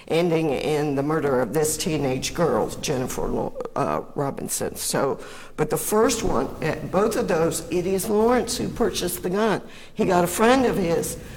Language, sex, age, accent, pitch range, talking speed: English, female, 50-69, American, 160-220 Hz, 170 wpm